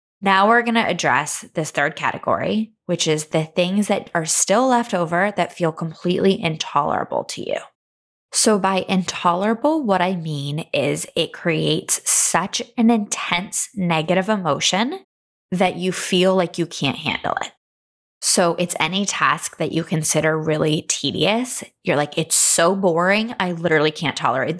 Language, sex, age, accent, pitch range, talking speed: English, female, 20-39, American, 155-195 Hz, 155 wpm